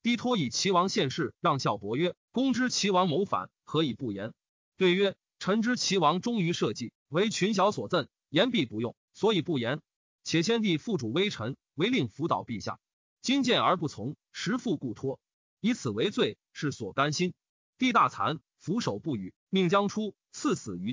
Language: Chinese